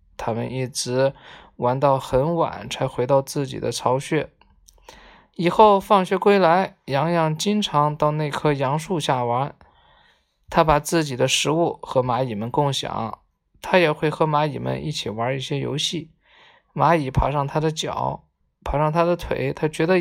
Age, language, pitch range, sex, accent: 20-39, Chinese, 135-175 Hz, male, native